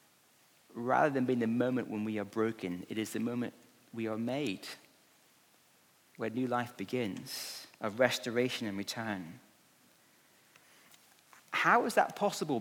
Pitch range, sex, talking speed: 115-160 Hz, male, 135 wpm